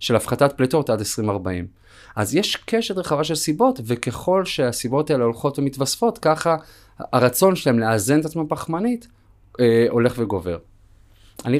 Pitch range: 115-160 Hz